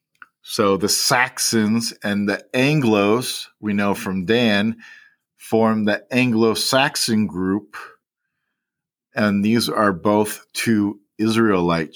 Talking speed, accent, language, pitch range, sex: 105 wpm, American, English, 95-115 Hz, male